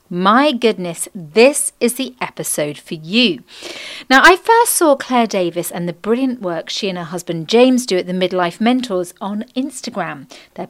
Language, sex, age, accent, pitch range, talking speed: English, female, 40-59, British, 175-245 Hz, 175 wpm